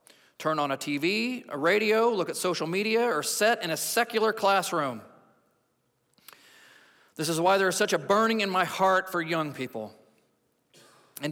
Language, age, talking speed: English, 40-59, 165 wpm